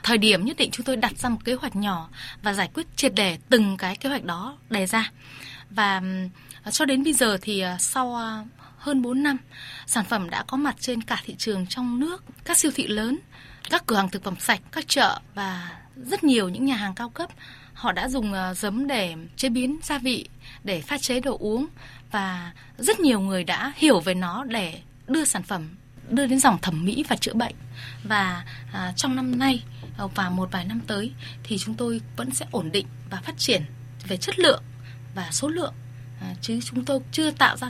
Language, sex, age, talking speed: Vietnamese, female, 20-39, 210 wpm